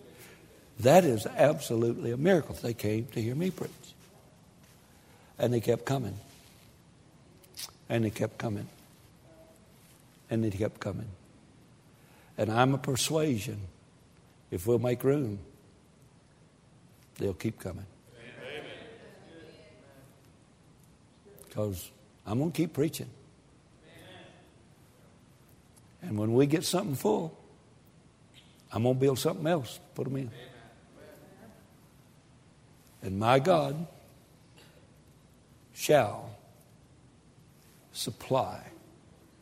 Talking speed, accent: 90 wpm, American